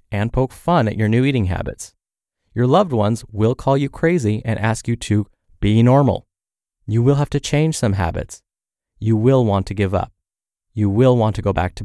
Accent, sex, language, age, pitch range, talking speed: American, male, English, 20-39, 100-125 Hz, 210 wpm